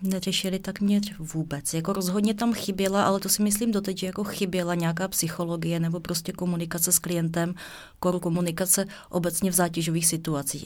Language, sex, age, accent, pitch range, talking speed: Czech, female, 30-49, native, 165-175 Hz, 165 wpm